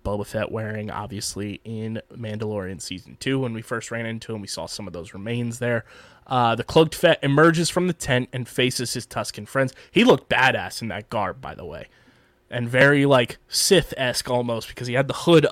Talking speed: 205 wpm